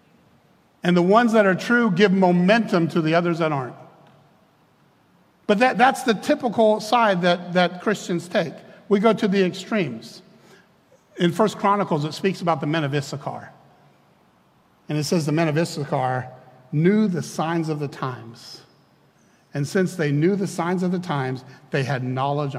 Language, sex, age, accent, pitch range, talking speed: English, male, 60-79, American, 140-185 Hz, 165 wpm